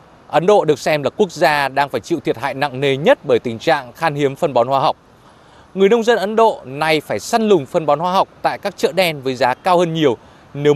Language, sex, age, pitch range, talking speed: Vietnamese, male, 20-39, 145-195 Hz, 260 wpm